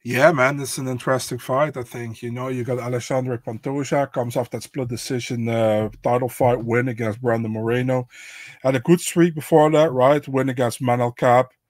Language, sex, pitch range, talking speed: English, male, 120-140 Hz, 190 wpm